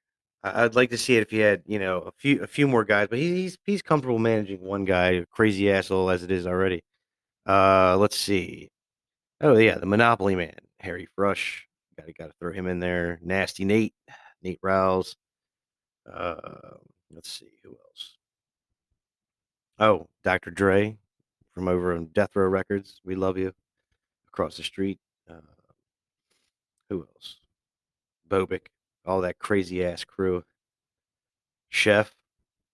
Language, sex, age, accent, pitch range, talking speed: English, male, 30-49, American, 90-105 Hz, 150 wpm